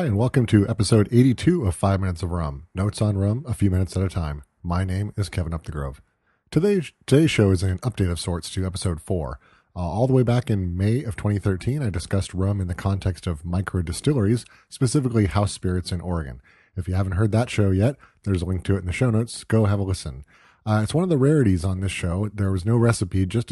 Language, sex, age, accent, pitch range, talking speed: English, male, 30-49, American, 90-110 Hz, 240 wpm